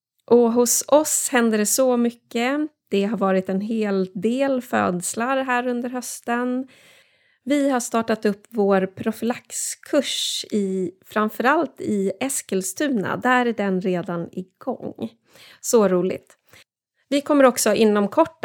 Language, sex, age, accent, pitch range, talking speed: Swedish, female, 30-49, native, 190-250 Hz, 125 wpm